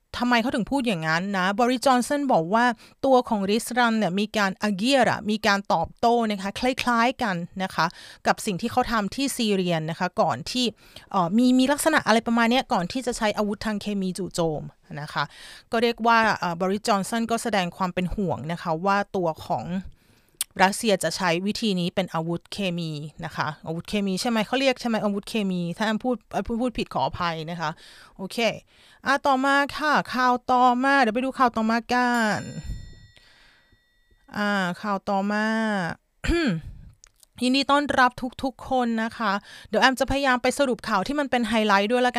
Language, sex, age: Thai, female, 30-49